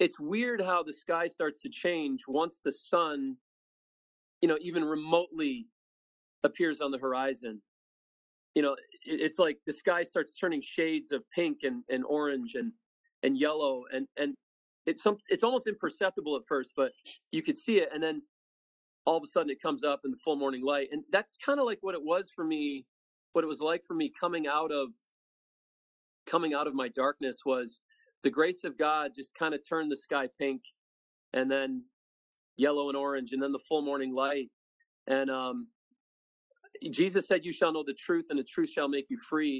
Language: English